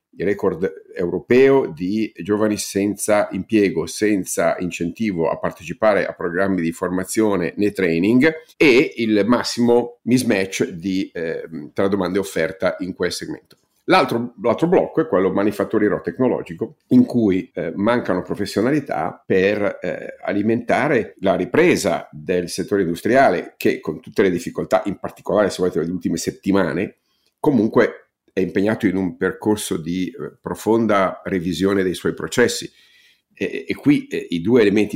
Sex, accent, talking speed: male, native, 140 wpm